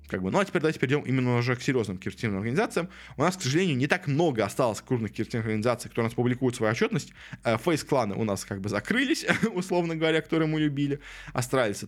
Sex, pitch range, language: male, 110-150 Hz, Russian